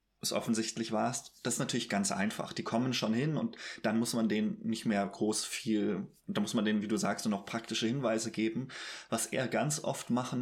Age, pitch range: 20-39, 110-130 Hz